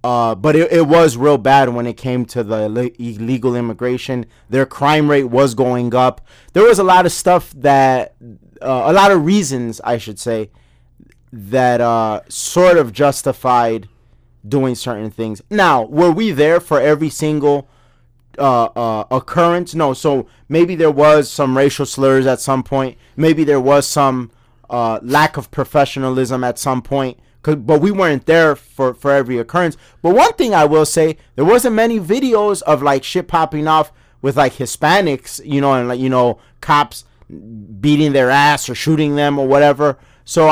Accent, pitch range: American, 125-155 Hz